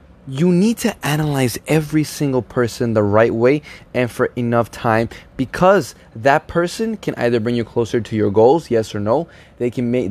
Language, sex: English, male